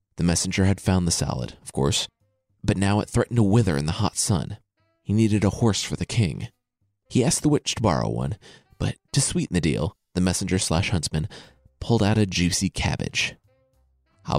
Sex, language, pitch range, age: male, English, 95-125 Hz, 30-49